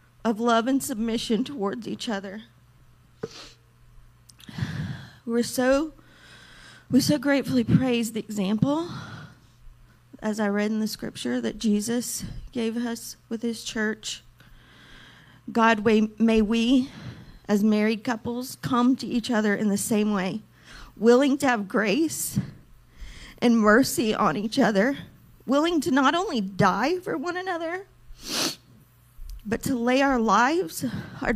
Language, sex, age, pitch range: English, female, 40-59, 190-245 Hz